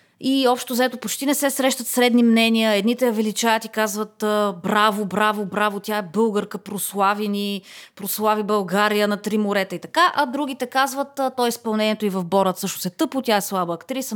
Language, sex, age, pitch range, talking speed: Bulgarian, female, 30-49, 190-245 Hz, 190 wpm